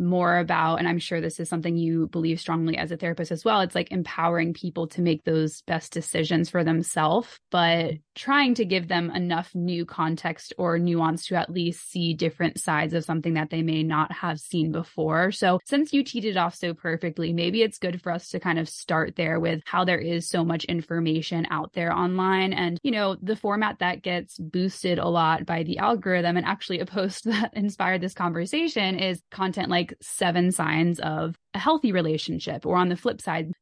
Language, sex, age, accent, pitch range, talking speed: English, female, 20-39, American, 165-185 Hz, 205 wpm